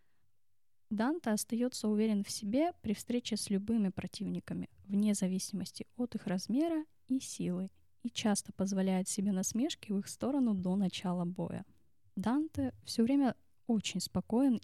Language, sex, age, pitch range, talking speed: Hebrew, female, 10-29, 185-230 Hz, 135 wpm